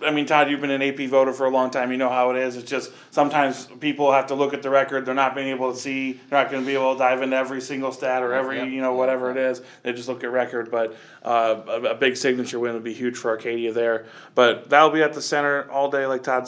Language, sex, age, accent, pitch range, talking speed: English, male, 20-39, American, 120-140 Hz, 290 wpm